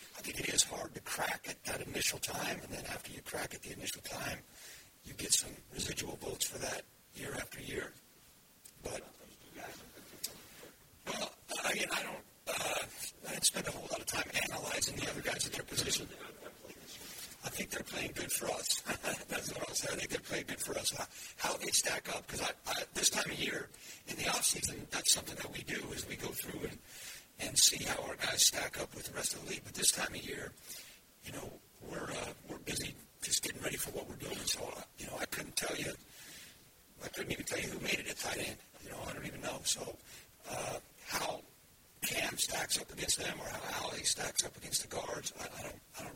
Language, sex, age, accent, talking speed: English, male, 60-79, American, 220 wpm